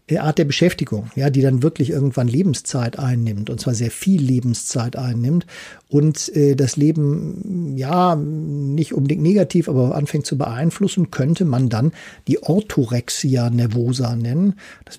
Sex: male